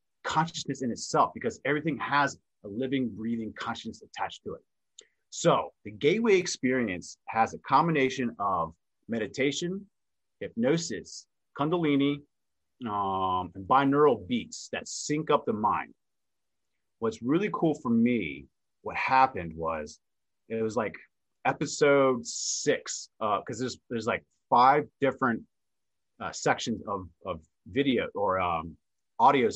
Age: 30-49